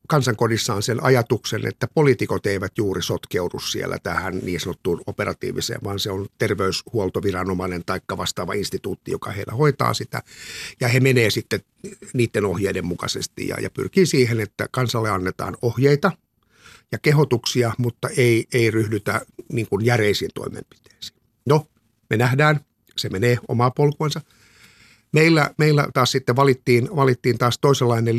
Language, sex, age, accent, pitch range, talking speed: Finnish, male, 50-69, native, 110-135 Hz, 135 wpm